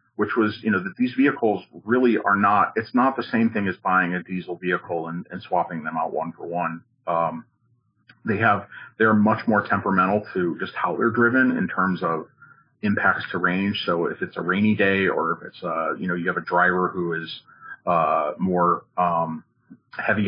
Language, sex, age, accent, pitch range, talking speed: English, male, 40-59, American, 85-115 Hz, 200 wpm